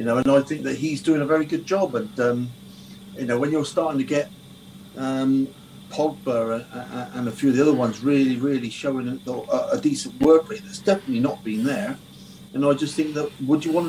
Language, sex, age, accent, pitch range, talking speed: English, male, 40-59, British, 125-160 Hz, 215 wpm